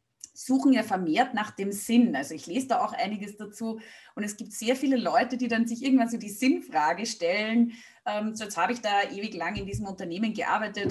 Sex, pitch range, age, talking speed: female, 195-245 Hz, 30-49, 215 wpm